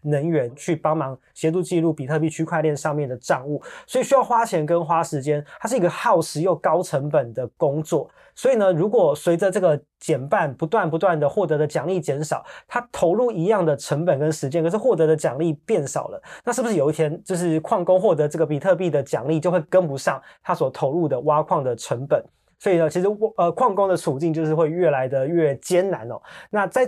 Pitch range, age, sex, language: 145-185 Hz, 20-39, male, Chinese